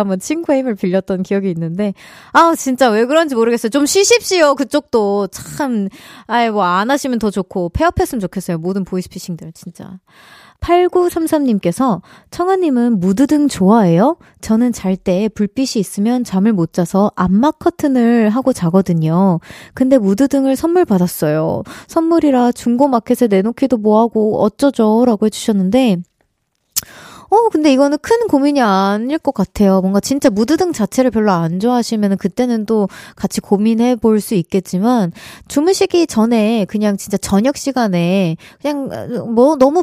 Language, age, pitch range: Korean, 20-39, 195-275 Hz